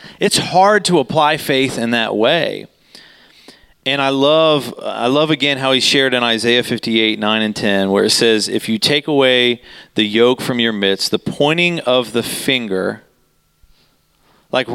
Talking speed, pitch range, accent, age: 165 wpm, 120-165 Hz, American, 40-59